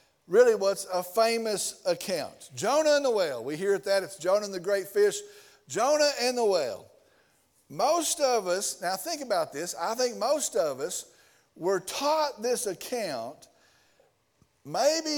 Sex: male